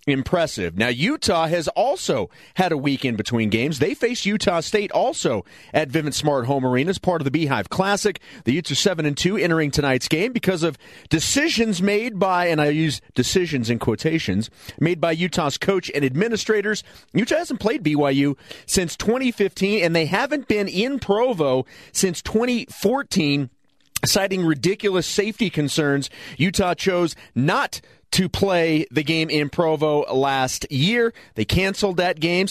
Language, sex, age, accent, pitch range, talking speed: English, male, 40-59, American, 145-195 Hz, 155 wpm